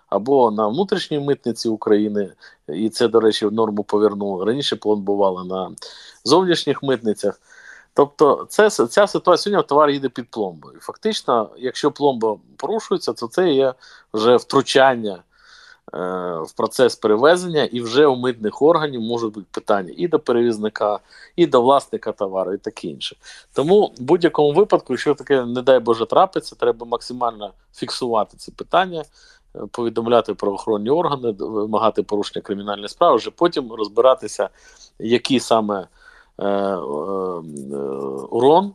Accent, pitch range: native, 105-140 Hz